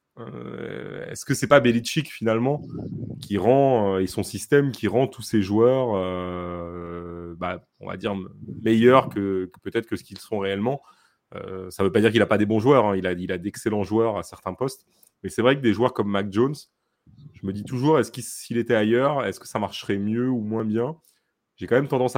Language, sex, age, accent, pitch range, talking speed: French, male, 30-49, French, 95-125 Hz, 230 wpm